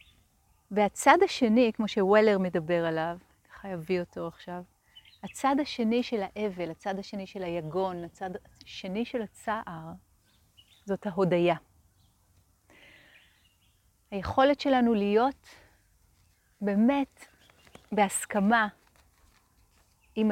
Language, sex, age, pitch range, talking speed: Hebrew, female, 30-49, 160-220 Hz, 90 wpm